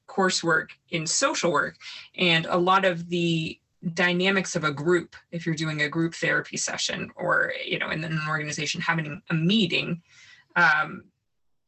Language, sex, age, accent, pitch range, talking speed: English, female, 20-39, American, 170-205 Hz, 155 wpm